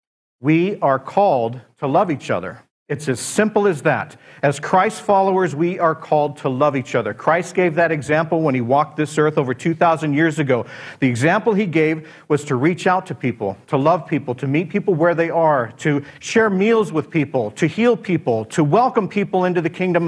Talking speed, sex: 205 wpm, male